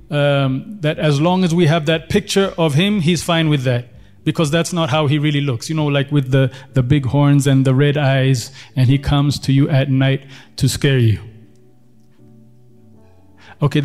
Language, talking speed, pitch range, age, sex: English, 195 wpm, 130-150 Hz, 30-49, male